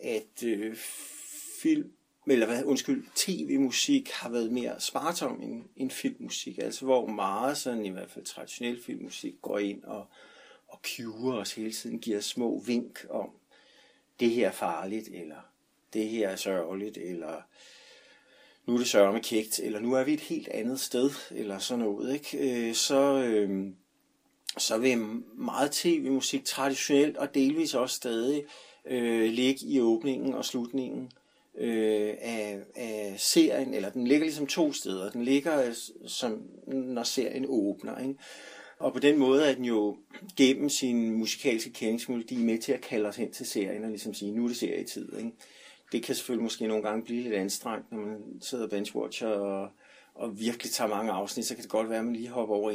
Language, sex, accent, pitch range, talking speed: Danish, male, native, 110-140 Hz, 175 wpm